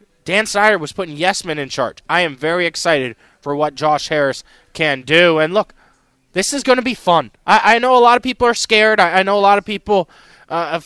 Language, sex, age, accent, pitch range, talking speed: English, male, 20-39, American, 155-210 Hz, 230 wpm